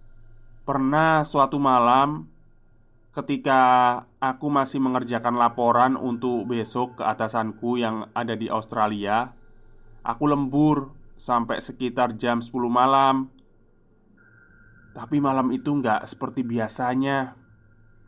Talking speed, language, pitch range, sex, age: 95 wpm, Indonesian, 110-135 Hz, male, 20-39